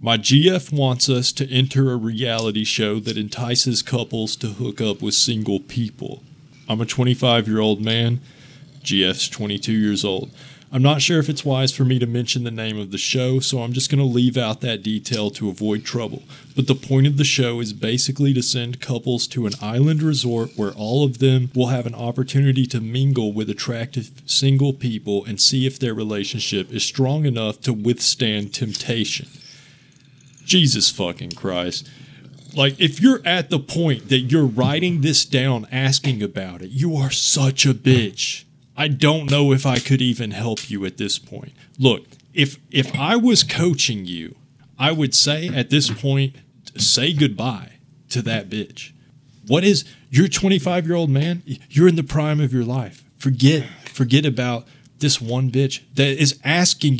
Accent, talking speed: American, 175 wpm